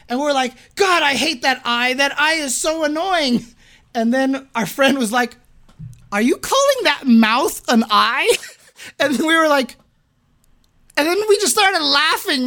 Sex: male